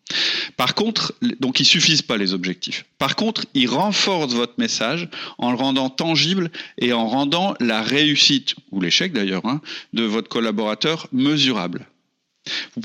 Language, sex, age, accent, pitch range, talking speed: French, male, 40-59, French, 120-195 Hz, 155 wpm